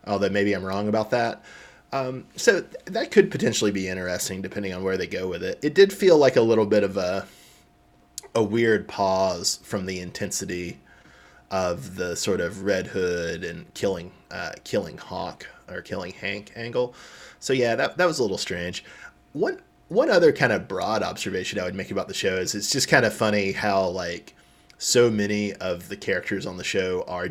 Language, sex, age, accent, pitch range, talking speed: English, male, 20-39, American, 95-135 Hz, 195 wpm